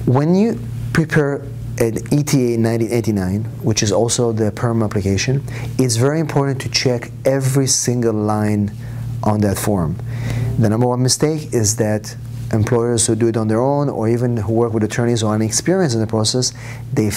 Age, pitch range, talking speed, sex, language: 30-49, 110-125 Hz, 170 wpm, male, English